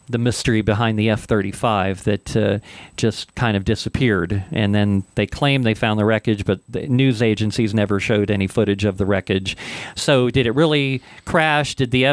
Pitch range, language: 110-140 Hz, English